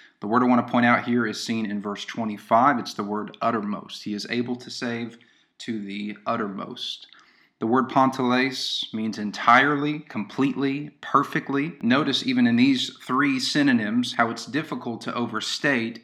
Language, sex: English, male